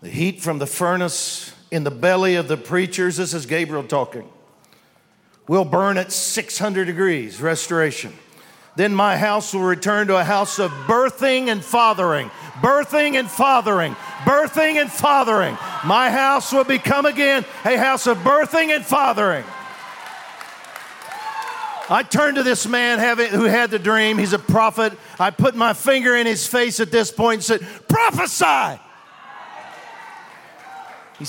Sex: male